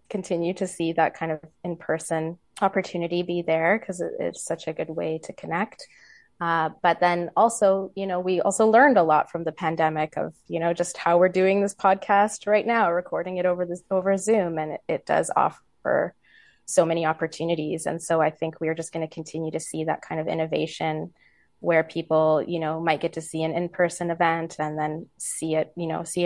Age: 20-39